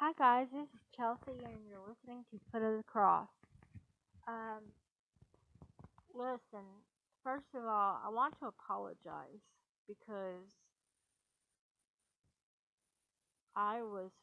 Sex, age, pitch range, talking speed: female, 30-49, 195-225 Hz, 100 wpm